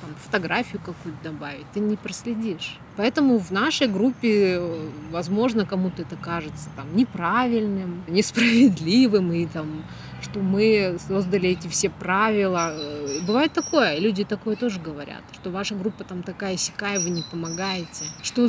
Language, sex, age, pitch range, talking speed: Russian, female, 20-39, 170-215 Hz, 135 wpm